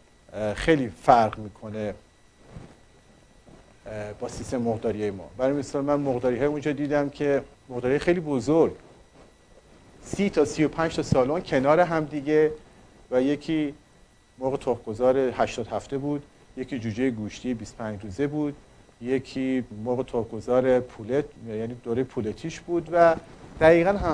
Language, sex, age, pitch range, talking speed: Persian, male, 50-69, 115-145 Hz, 125 wpm